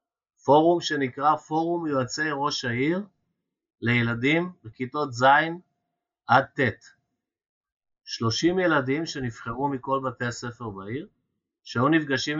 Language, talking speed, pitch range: Hebrew, 95 wpm, 120-150 Hz